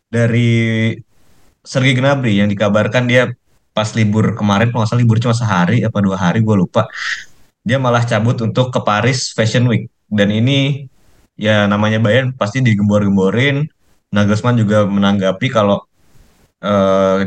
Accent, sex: native, male